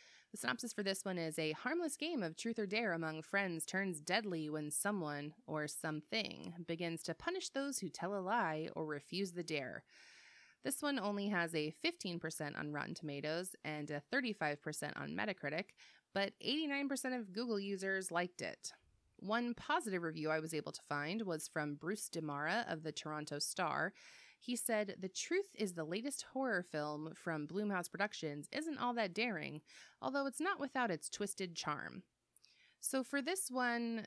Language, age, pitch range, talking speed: English, 20-39, 155-235 Hz, 170 wpm